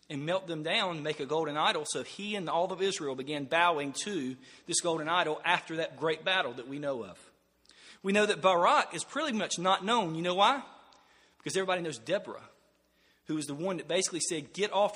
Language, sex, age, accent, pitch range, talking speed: English, male, 40-59, American, 160-190 Hz, 215 wpm